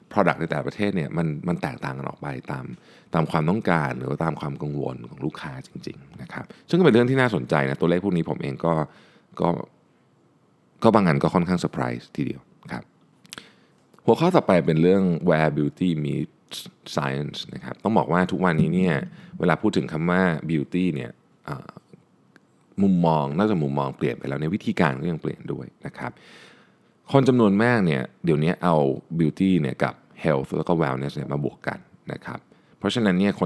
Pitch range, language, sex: 75-95 Hz, Thai, male